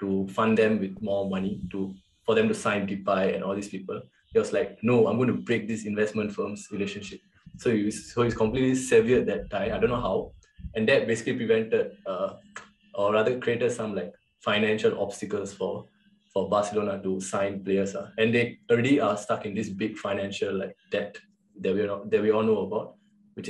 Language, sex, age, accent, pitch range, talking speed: English, male, 20-39, Indian, 100-130 Hz, 200 wpm